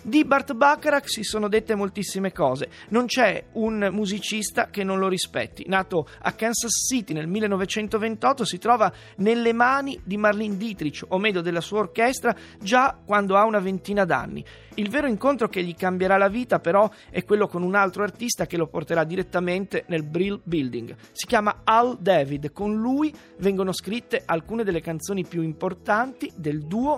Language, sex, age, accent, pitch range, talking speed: Italian, male, 30-49, native, 175-225 Hz, 170 wpm